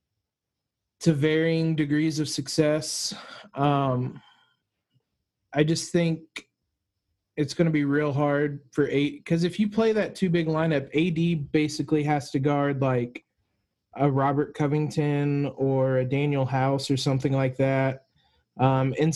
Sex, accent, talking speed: male, American, 140 wpm